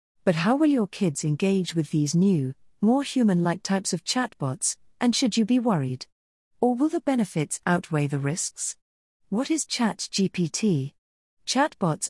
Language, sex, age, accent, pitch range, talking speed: English, female, 40-59, British, 150-215 Hz, 150 wpm